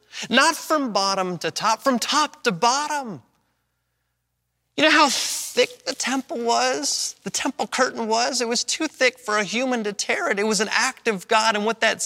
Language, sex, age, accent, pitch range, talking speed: English, male, 30-49, American, 135-220 Hz, 195 wpm